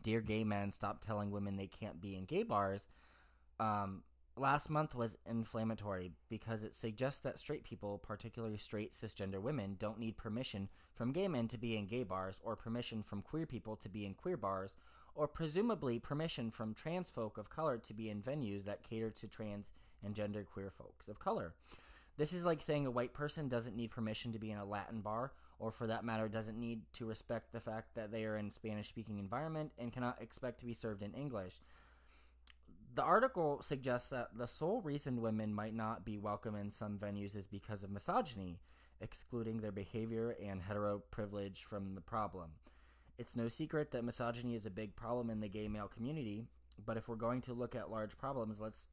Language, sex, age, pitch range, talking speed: English, male, 20-39, 100-120 Hz, 200 wpm